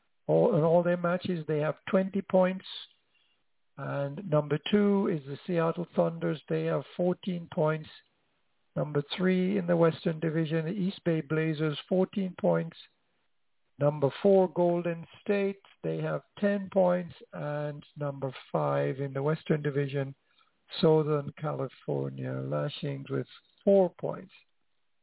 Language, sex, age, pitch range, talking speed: English, male, 60-79, 150-190 Hz, 125 wpm